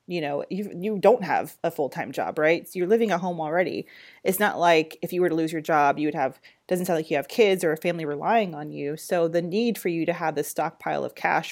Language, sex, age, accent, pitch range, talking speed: English, female, 30-49, American, 150-180 Hz, 270 wpm